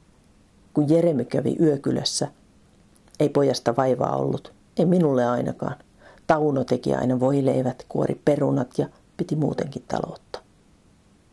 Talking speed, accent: 110 wpm, native